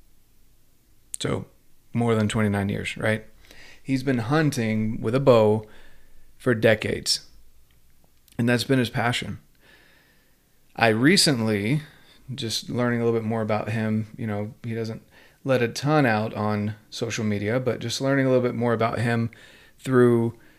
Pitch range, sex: 105-130 Hz, male